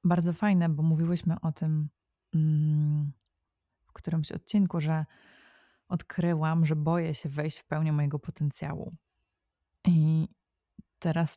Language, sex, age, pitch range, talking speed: Polish, female, 20-39, 145-170 Hz, 110 wpm